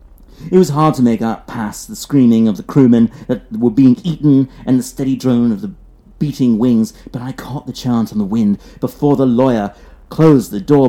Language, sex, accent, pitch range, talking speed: English, male, British, 105-150 Hz, 210 wpm